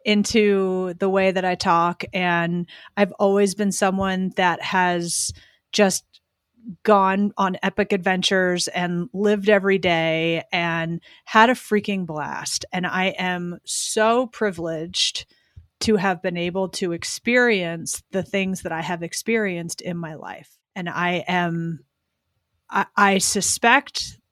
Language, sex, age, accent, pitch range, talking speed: English, female, 30-49, American, 180-220 Hz, 130 wpm